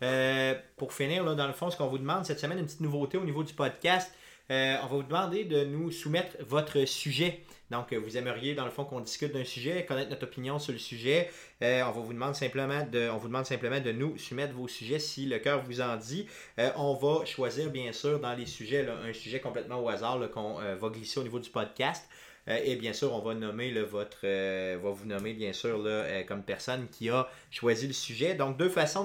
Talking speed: 245 wpm